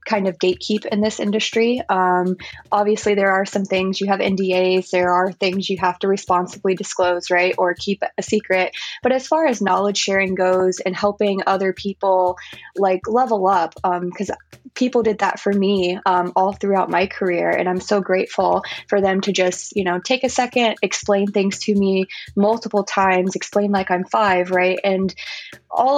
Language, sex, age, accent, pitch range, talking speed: English, female, 20-39, American, 185-210 Hz, 185 wpm